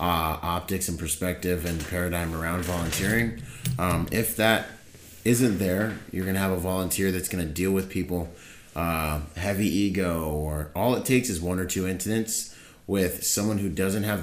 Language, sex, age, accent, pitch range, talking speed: English, male, 30-49, American, 85-105 Hz, 175 wpm